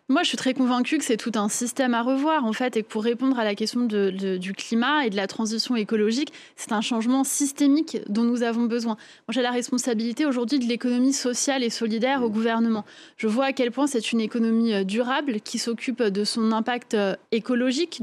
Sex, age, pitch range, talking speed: female, 20-39, 220-260 Hz, 215 wpm